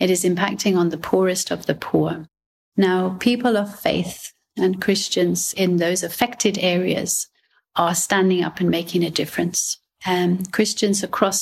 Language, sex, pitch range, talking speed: English, female, 175-200 Hz, 150 wpm